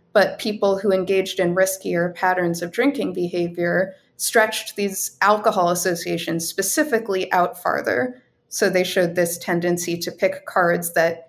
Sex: female